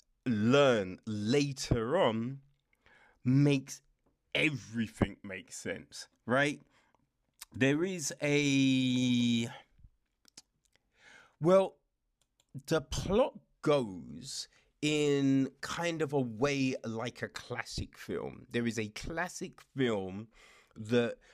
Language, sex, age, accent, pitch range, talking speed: English, male, 30-49, British, 115-145 Hz, 85 wpm